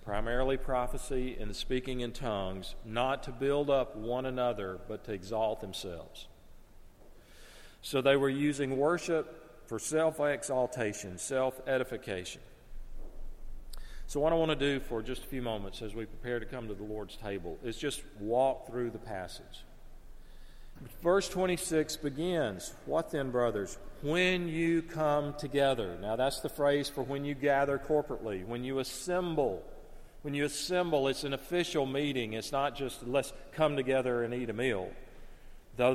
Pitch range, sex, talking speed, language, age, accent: 115-145 Hz, male, 150 wpm, English, 40-59, American